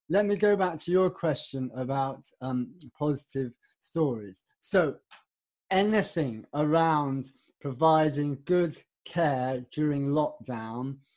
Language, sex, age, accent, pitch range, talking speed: English, male, 30-49, British, 135-160 Hz, 100 wpm